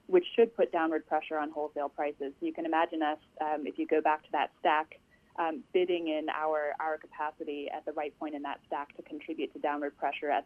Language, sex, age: English, female, 20-39